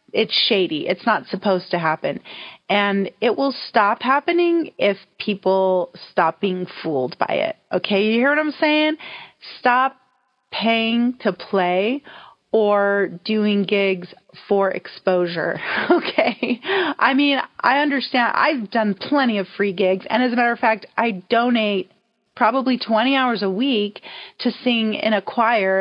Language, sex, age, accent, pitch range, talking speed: English, female, 30-49, American, 190-245 Hz, 145 wpm